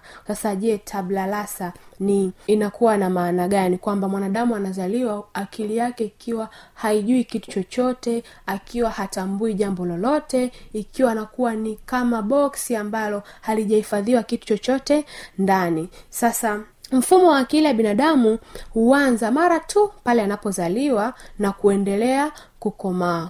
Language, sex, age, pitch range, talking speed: Swahili, female, 20-39, 195-240 Hz, 115 wpm